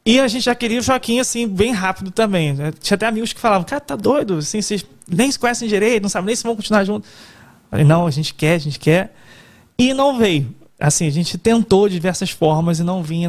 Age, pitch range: 20-39, 165-230 Hz